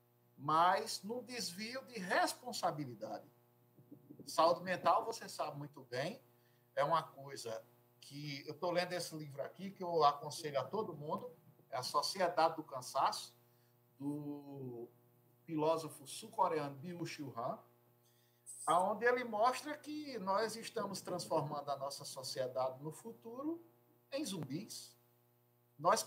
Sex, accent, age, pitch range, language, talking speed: male, Brazilian, 60-79, 120-195 Hz, Portuguese, 120 wpm